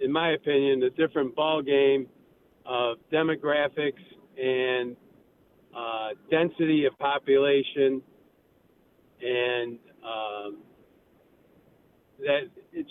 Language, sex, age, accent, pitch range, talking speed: English, male, 50-69, American, 130-180 Hz, 85 wpm